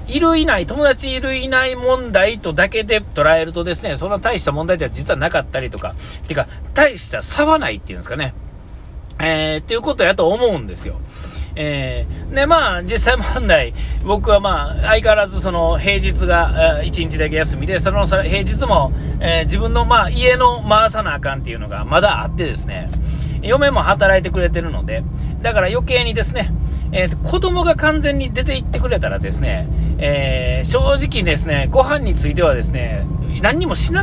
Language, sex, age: Japanese, male, 40-59